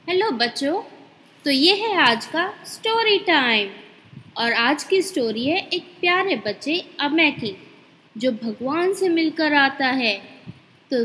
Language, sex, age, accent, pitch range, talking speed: Hindi, female, 20-39, native, 245-360 Hz, 140 wpm